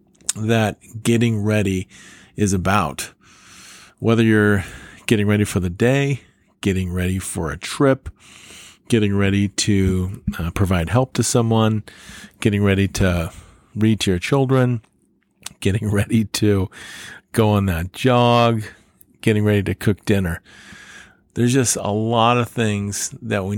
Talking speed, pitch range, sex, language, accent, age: 130 wpm, 95-110 Hz, male, English, American, 40-59